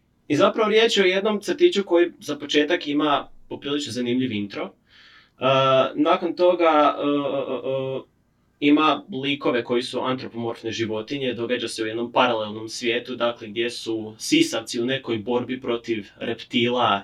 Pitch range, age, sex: 110-135 Hz, 20-39, male